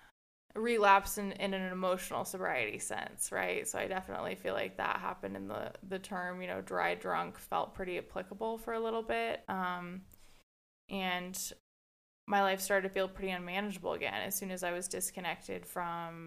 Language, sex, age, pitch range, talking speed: English, female, 20-39, 175-195 Hz, 175 wpm